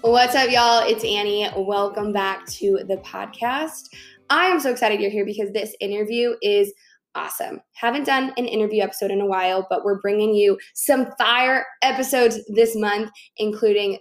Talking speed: 165 wpm